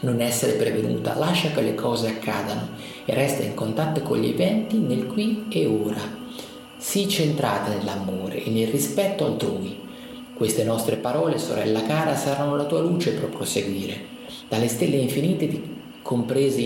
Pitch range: 110-155 Hz